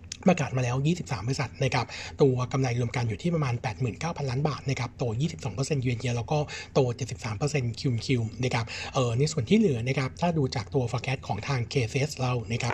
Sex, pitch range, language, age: male, 120-145 Hz, Thai, 60-79